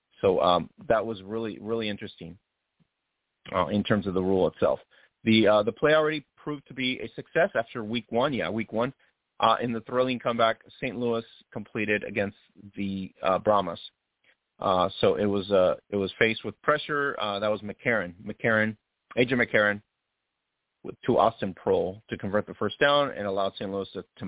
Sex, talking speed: male, 185 wpm